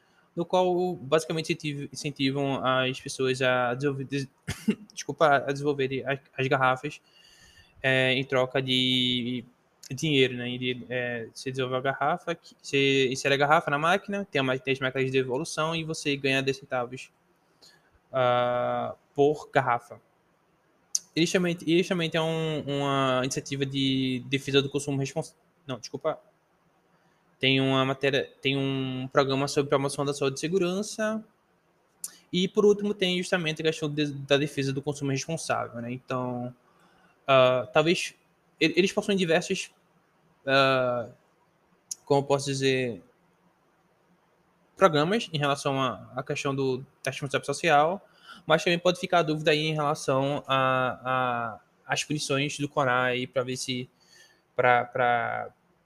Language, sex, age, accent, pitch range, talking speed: Portuguese, male, 20-39, Brazilian, 130-165 Hz, 140 wpm